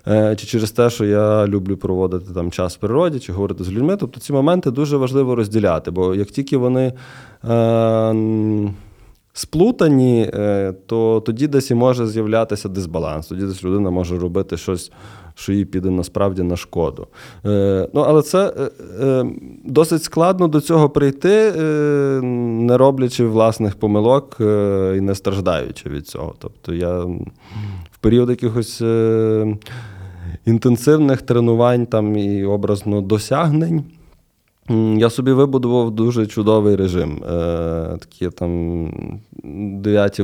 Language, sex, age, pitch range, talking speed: Ukrainian, male, 20-39, 100-125 Hz, 120 wpm